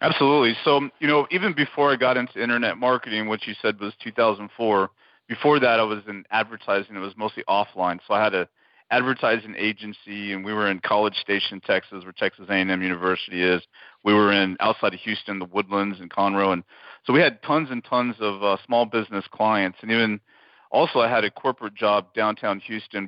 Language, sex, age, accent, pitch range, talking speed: English, male, 40-59, American, 95-110 Hz, 200 wpm